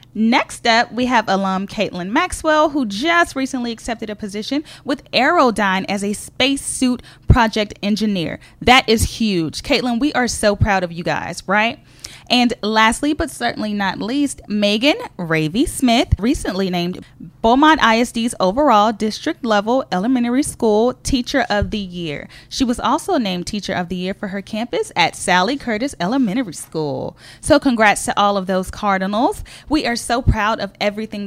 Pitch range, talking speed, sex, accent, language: 200-265 Hz, 160 wpm, female, American, English